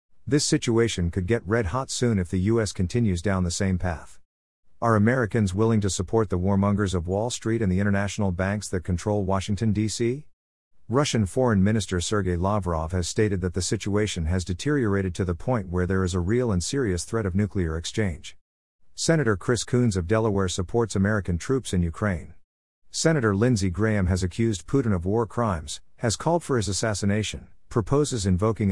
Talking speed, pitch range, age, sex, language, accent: 180 wpm, 90-115 Hz, 50-69, male, English, American